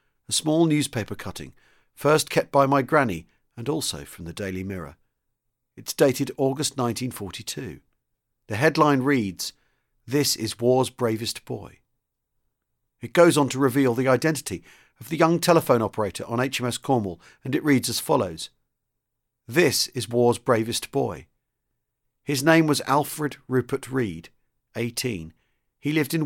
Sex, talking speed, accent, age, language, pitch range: male, 140 wpm, British, 50-69, English, 120-145 Hz